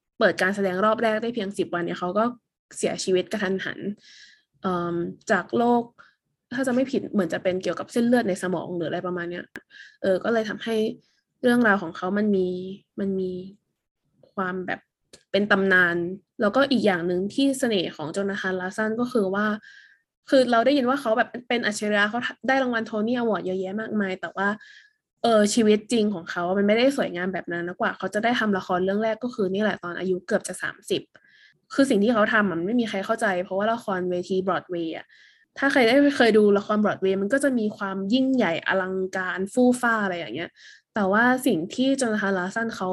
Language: Thai